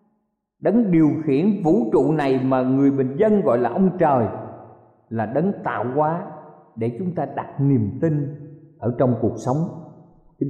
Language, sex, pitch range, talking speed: Vietnamese, male, 125-185 Hz, 165 wpm